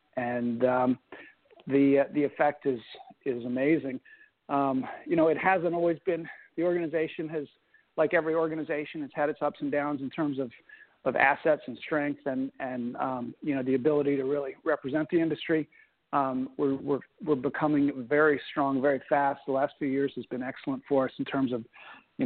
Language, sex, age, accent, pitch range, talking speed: English, male, 50-69, American, 135-155 Hz, 190 wpm